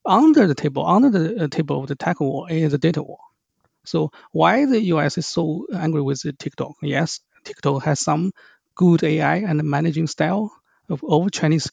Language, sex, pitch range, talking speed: English, male, 145-180 Hz, 175 wpm